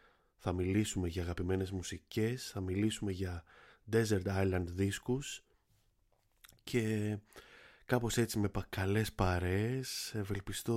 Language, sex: Greek, male